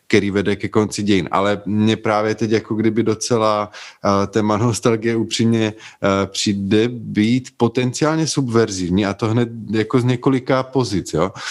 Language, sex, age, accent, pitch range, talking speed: Czech, male, 20-39, native, 100-115 Hz, 150 wpm